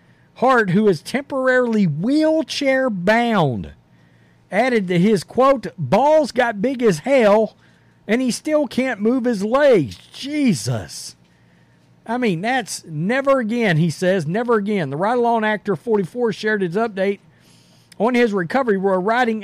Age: 50-69